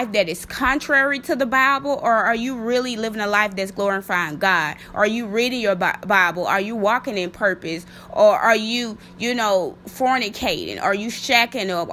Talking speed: 180 wpm